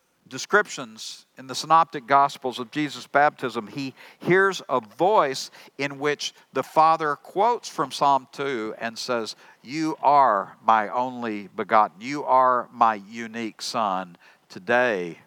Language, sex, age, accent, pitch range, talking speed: English, male, 60-79, American, 115-140 Hz, 130 wpm